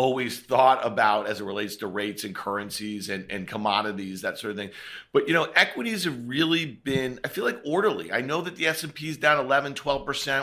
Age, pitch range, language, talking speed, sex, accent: 40-59, 120-155 Hz, English, 215 wpm, male, American